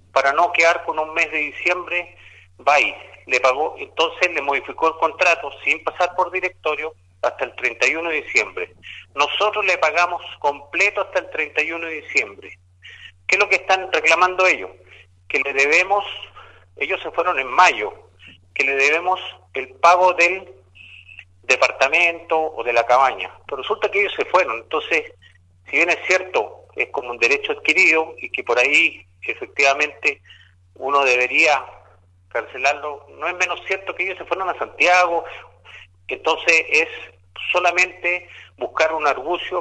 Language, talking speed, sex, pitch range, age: Spanish, 155 wpm, male, 120-180 Hz, 40-59